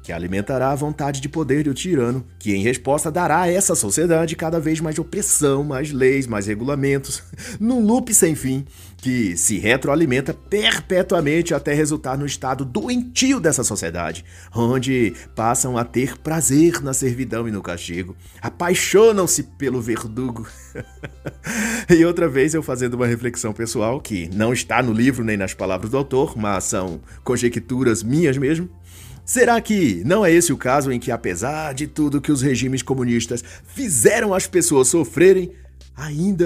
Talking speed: 155 wpm